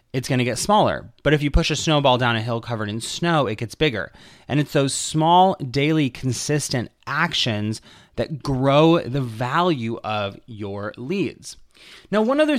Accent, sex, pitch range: American, male, 115-175 Hz